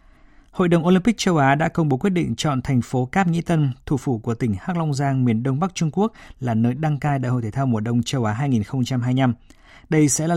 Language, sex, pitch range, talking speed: Vietnamese, male, 115-150 Hz, 255 wpm